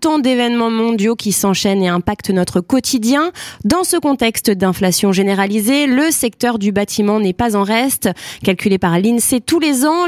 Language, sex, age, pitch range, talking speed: French, female, 20-39, 205-275 Hz, 165 wpm